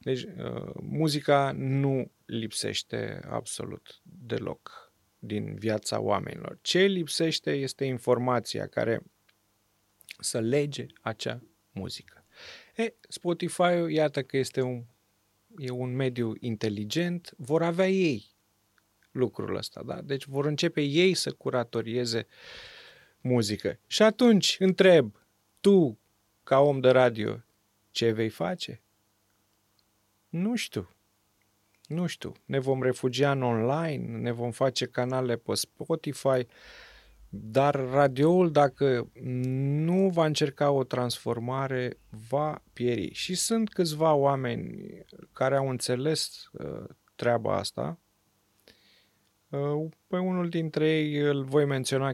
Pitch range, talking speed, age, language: 110-150 Hz, 110 wpm, 30-49, Romanian